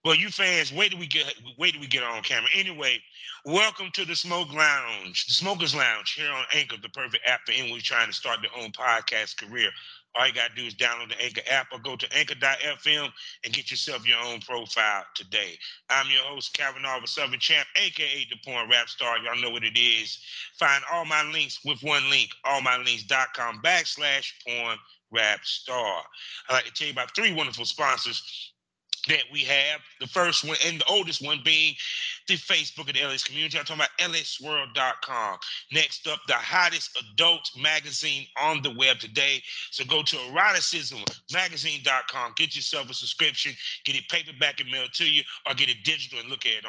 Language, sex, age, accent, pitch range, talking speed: English, male, 30-49, American, 125-160 Hz, 190 wpm